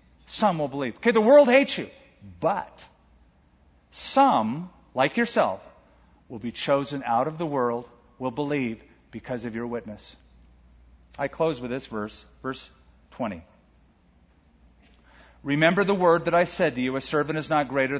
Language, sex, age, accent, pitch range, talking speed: English, male, 50-69, American, 105-175 Hz, 150 wpm